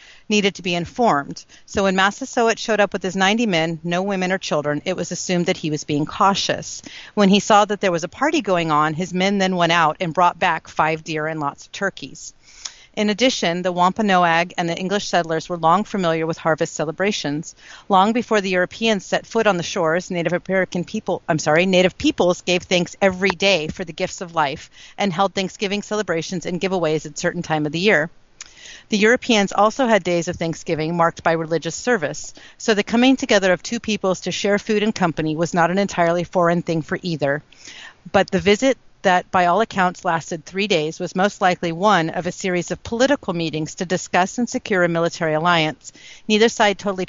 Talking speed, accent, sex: 205 wpm, American, female